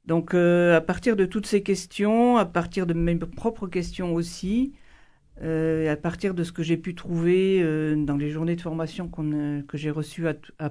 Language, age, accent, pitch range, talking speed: French, 50-69, French, 160-200 Hz, 205 wpm